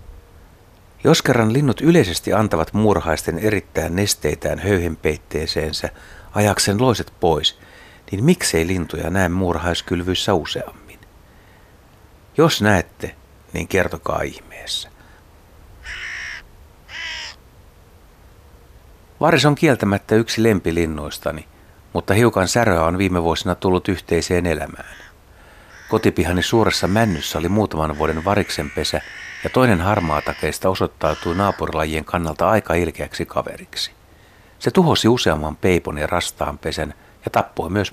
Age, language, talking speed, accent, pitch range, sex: 60-79, Finnish, 105 wpm, native, 85-105 Hz, male